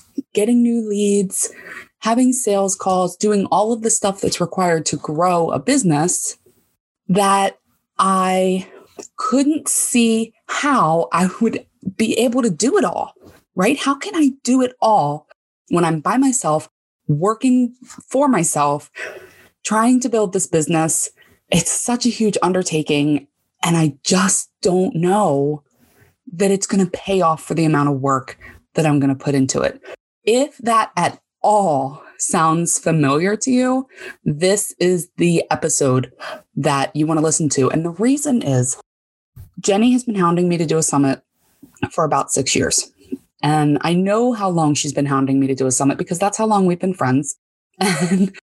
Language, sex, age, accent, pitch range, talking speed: English, female, 20-39, American, 155-225 Hz, 165 wpm